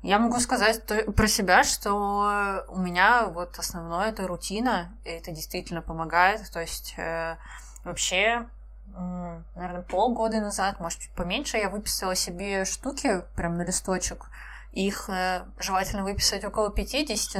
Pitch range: 180-210 Hz